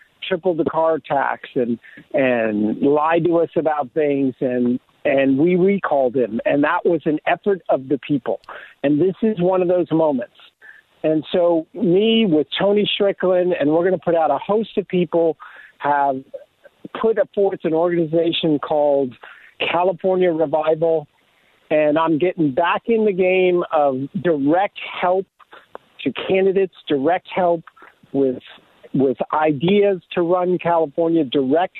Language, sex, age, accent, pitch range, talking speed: English, male, 50-69, American, 155-185 Hz, 145 wpm